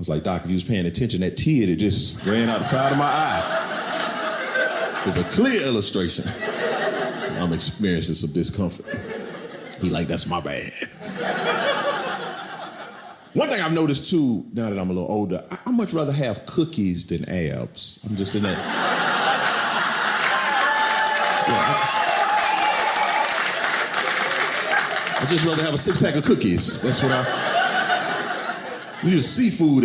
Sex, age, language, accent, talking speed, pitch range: male, 40-59, English, American, 140 wpm, 90-150 Hz